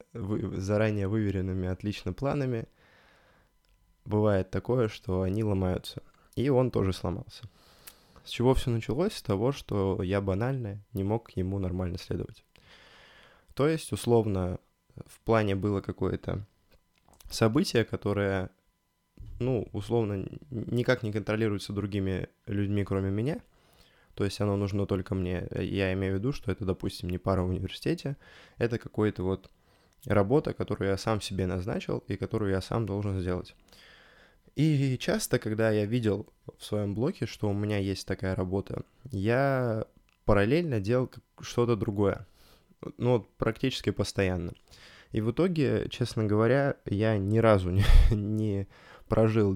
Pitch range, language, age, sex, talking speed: 95-115 Hz, Russian, 20-39, male, 135 wpm